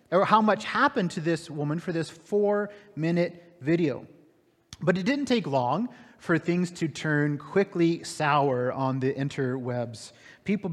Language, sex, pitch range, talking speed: English, male, 145-195 Hz, 150 wpm